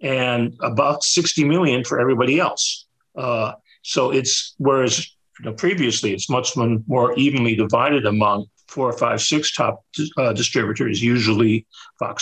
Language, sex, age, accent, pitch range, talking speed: English, male, 50-69, American, 110-140 Hz, 130 wpm